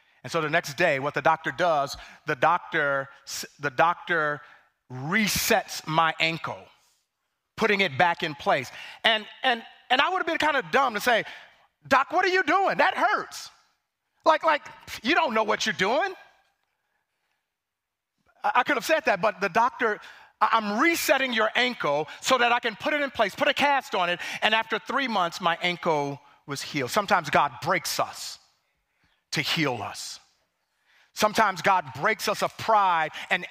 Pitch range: 160-250 Hz